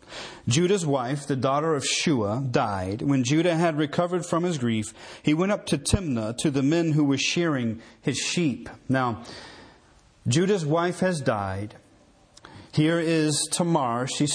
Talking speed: 150 wpm